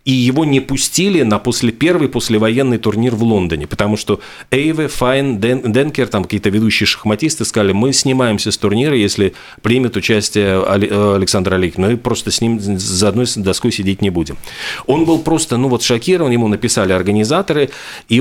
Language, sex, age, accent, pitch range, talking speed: Russian, male, 40-59, native, 100-130 Hz, 165 wpm